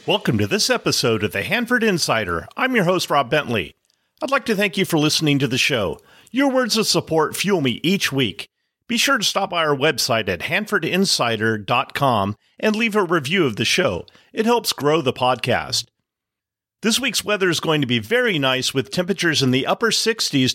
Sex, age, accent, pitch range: male, 40-59, American, 125-195 Hz